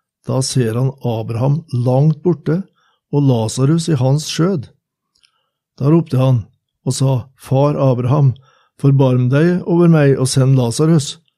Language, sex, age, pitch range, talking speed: English, male, 60-79, 130-150 Hz, 130 wpm